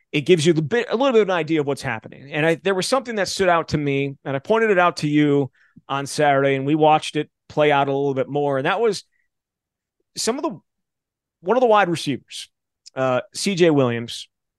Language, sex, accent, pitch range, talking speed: English, male, American, 135-170 Hz, 235 wpm